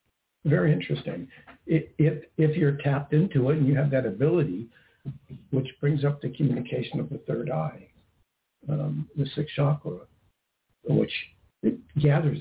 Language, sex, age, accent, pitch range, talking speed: English, male, 60-79, American, 125-150 Hz, 145 wpm